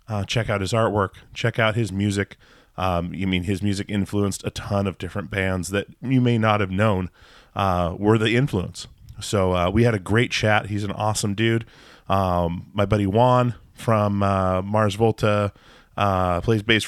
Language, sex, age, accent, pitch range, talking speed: English, male, 30-49, American, 95-115 Hz, 185 wpm